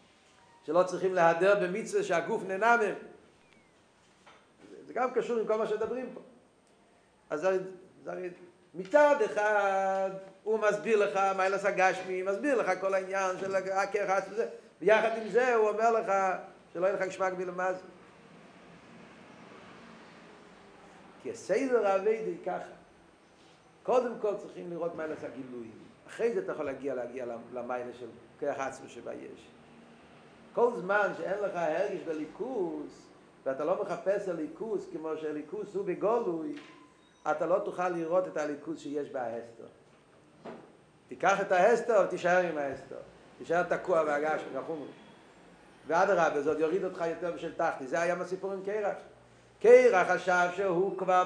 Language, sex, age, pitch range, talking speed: Hebrew, male, 50-69, 170-205 Hz, 135 wpm